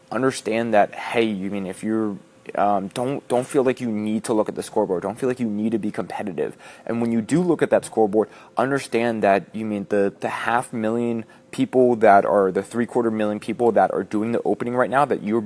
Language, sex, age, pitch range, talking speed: English, male, 20-39, 100-115 Hz, 235 wpm